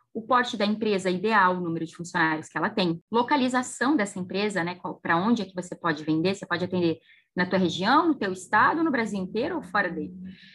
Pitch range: 185-235 Hz